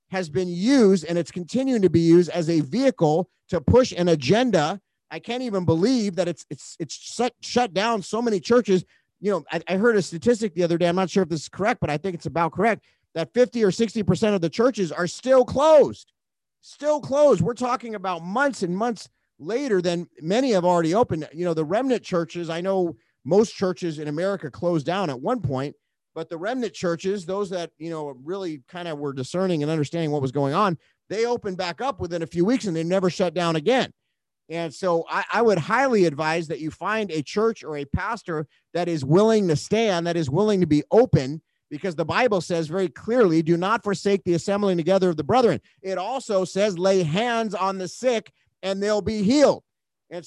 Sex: male